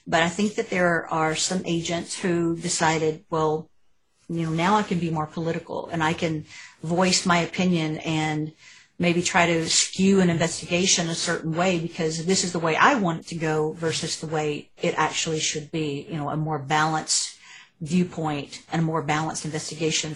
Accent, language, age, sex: American, English, 40-59, female